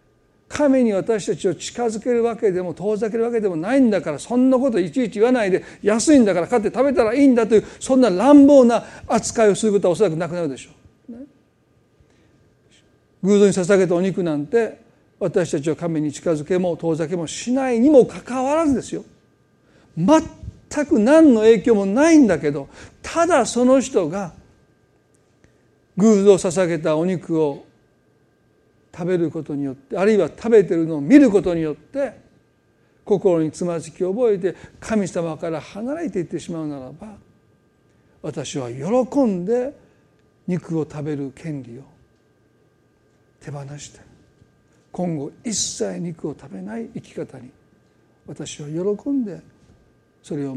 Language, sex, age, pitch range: Japanese, male, 40-59, 155-230 Hz